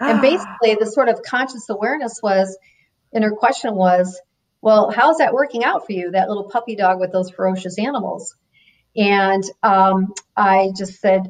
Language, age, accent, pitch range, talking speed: English, 40-59, American, 190-220 Hz, 170 wpm